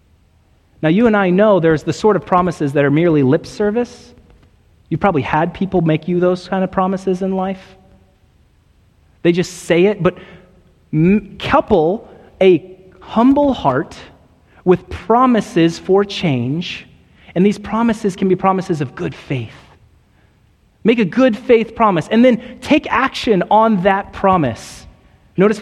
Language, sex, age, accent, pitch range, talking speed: English, male, 30-49, American, 130-205 Hz, 145 wpm